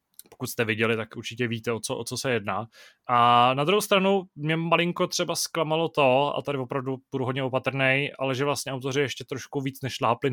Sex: male